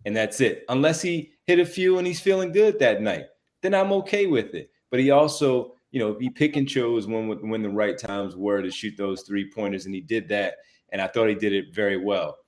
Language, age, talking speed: English, 30-49, 245 wpm